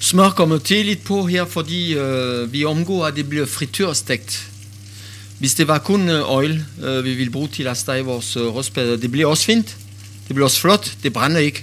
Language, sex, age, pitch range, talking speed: Danish, male, 50-69, 105-150 Hz, 205 wpm